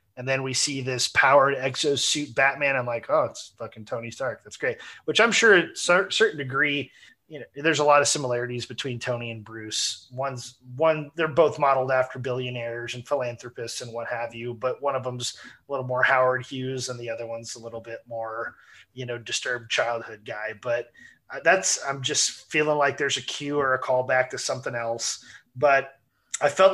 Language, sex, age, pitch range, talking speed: English, male, 30-49, 125-145 Hz, 195 wpm